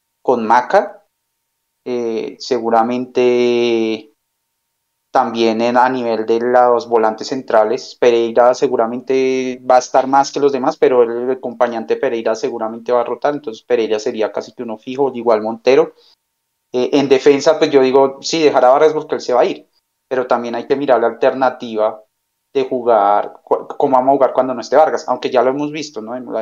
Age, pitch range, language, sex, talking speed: 30-49, 115-135 Hz, Spanish, male, 185 wpm